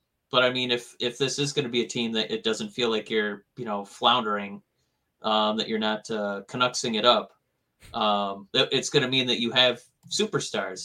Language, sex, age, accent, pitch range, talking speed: English, male, 30-49, American, 110-145 Hz, 210 wpm